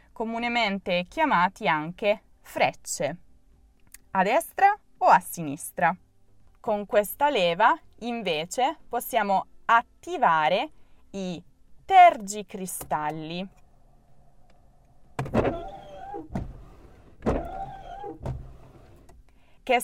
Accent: native